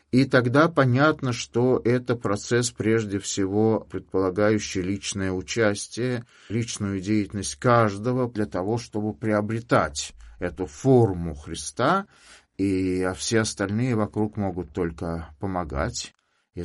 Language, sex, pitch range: Russian, male, 80-110 Hz